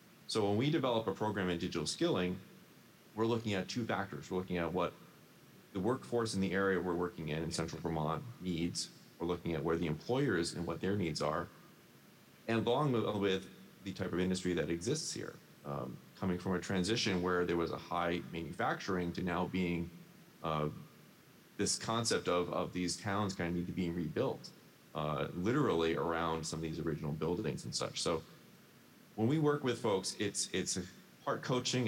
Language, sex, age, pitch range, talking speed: English, male, 30-49, 85-110 Hz, 185 wpm